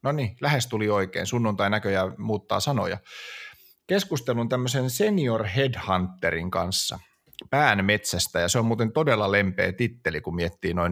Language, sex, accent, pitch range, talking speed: Finnish, male, native, 100-135 Hz, 120 wpm